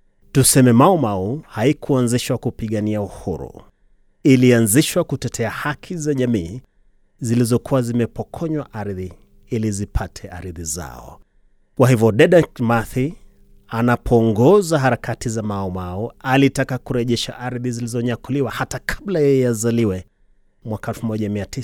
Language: Swahili